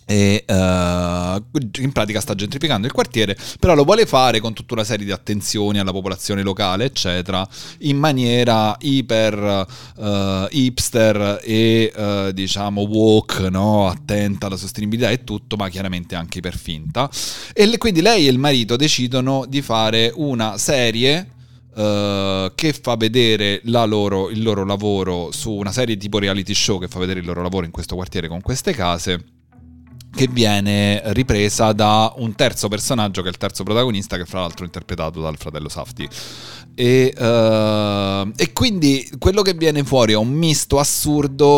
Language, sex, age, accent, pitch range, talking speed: Italian, male, 30-49, native, 95-125 Hz, 165 wpm